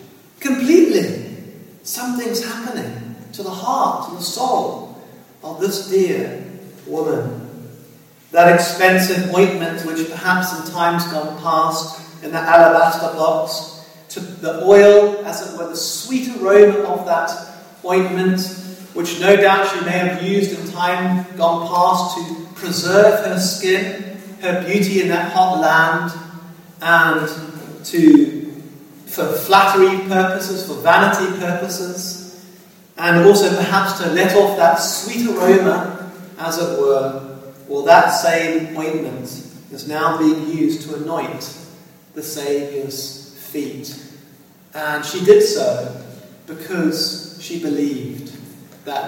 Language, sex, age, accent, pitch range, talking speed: English, male, 40-59, British, 160-190 Hz, 120 wpm